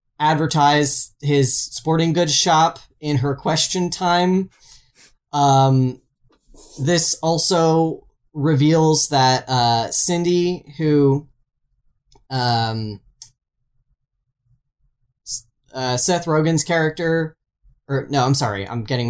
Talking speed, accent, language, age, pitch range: 90 wpm, American, English, 10-29, 125-160 Hz